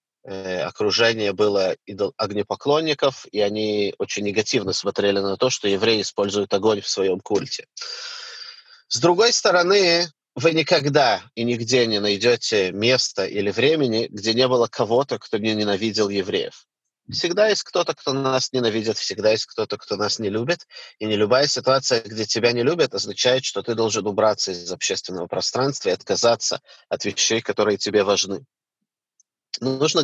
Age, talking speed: 30-49, 150 wpm